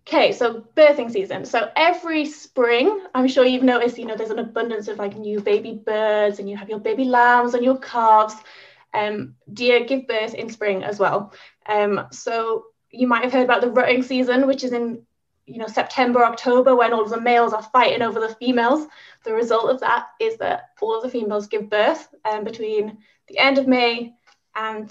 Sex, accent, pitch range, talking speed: female, British, 220-265 Hz, 200 wpm